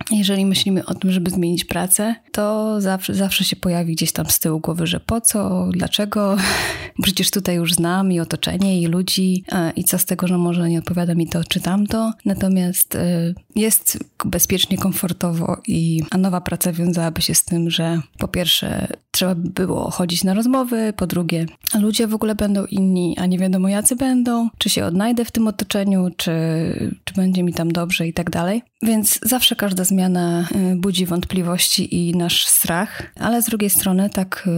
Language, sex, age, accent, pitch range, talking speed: Polish, female, 20-39, native, 170-195 Hz, 180 wpm